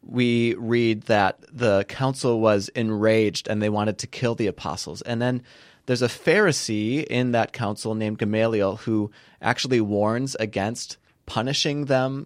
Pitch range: 105-130 Hz